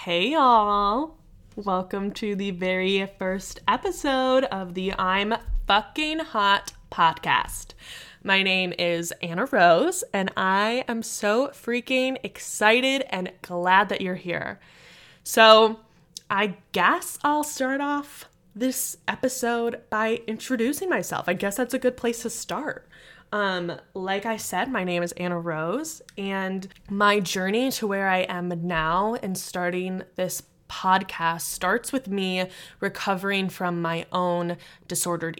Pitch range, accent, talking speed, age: 175-215 Hz, American, 130 wpm, 10-29